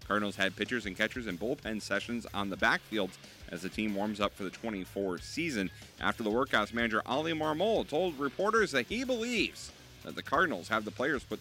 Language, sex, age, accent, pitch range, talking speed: English, male, 30-49, American, 95-115 Hz, 200 wpm